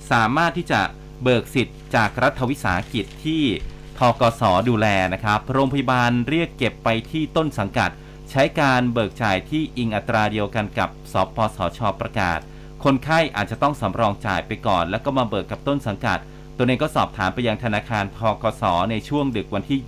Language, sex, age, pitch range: Thai, male, 30-49, 105-140 Hz